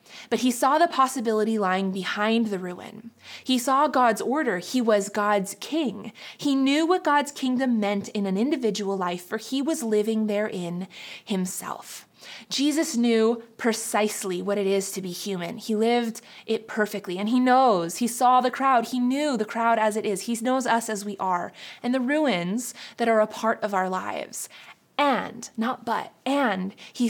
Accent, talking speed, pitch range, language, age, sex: American, 180 wpm, 210-260 Hz, English, 20-39, female